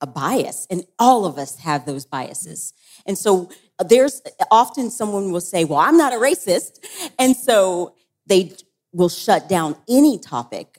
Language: English